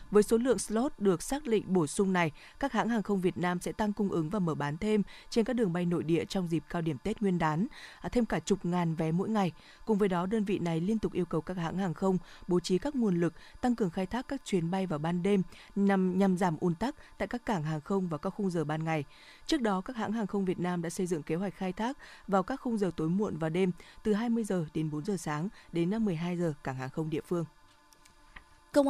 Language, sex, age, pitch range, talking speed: Vietnamese, female, 20-39, 180-225 Hz, 265 wpm